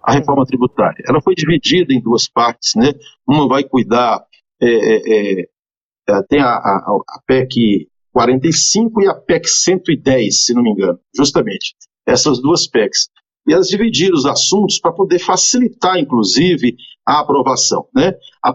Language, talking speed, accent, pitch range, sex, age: Portuguese, 150 wpm, Brazilian, 130-190 Hz, male, 50-69